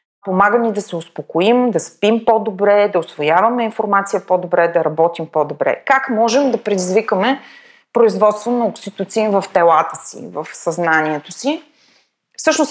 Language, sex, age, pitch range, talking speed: Bulgarian, female, 30-49, 170-220 Hz, 135 wpm